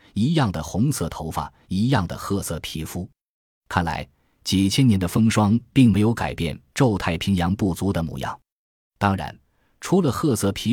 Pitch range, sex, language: 85-110 Hz, male, Chinese